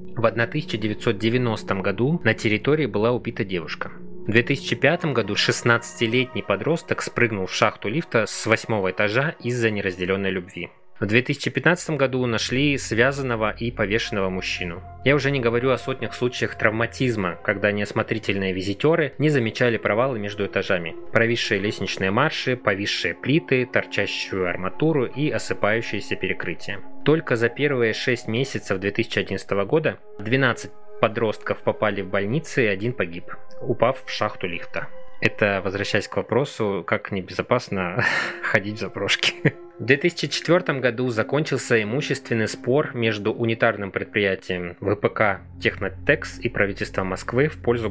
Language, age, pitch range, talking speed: Russian, 20-39, 100-130 Hz, 125 wpm